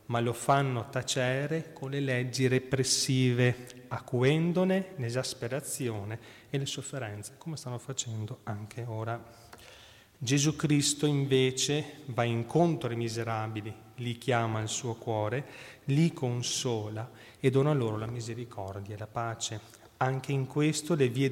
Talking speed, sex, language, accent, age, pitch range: 125 wpm, male, Italian, native, 30-49, 115-140 Hz